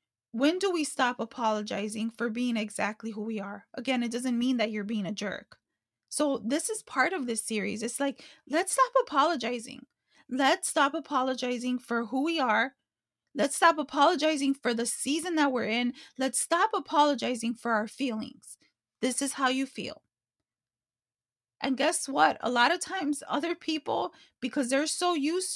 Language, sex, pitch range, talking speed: English, female, 235-295 Hz, 170 wpm